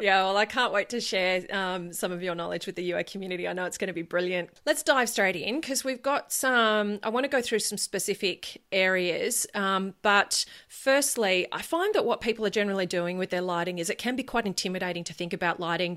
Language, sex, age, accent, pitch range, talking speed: English, female, 30-49, Australian, 175-205 Hz, 235 wpm